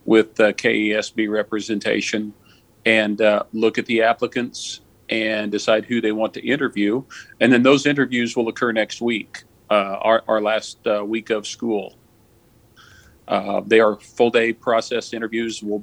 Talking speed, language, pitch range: 155 wpm, English, 105-115 Hz